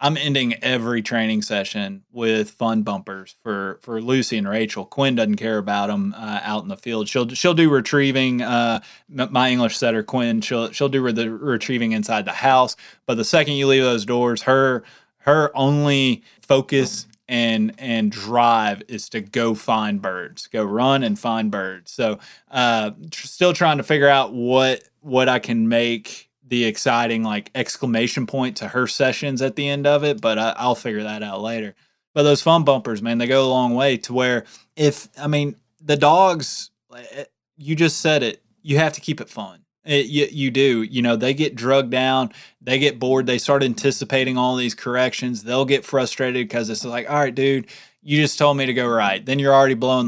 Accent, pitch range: American, 115-140 Hz